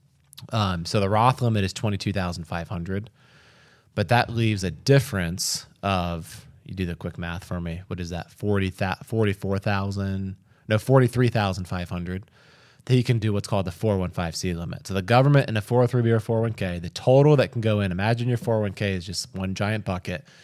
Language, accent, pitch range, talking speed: English, American, 95-120 Hz, 165 wpm